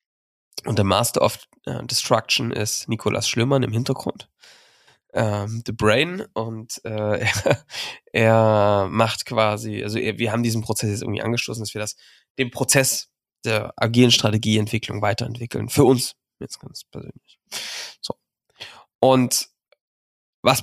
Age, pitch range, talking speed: 20-39, 110-130 Hz, 130 wpm